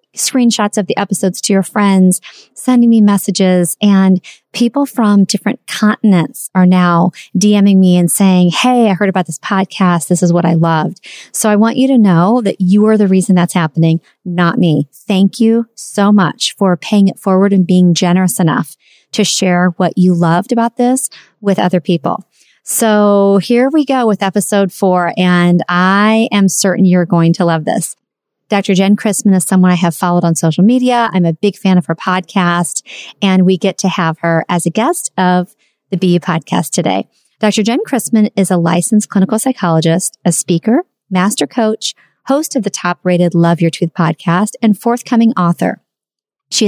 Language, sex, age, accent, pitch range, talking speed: English, female, 30-49, American, 175-210 Hz, 180 wpm